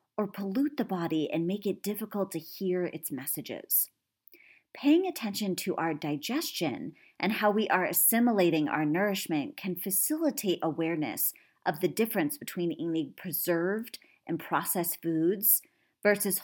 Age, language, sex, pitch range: 30-49, English, female, 165-225 Hz